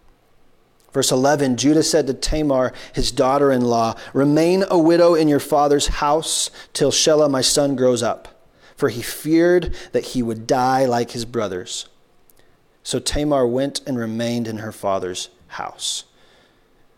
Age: 30-49